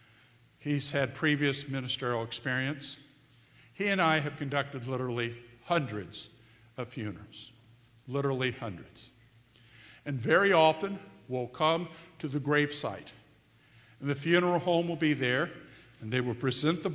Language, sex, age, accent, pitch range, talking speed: English, male, 50-69, American, 120-170 Hz, 125 wpm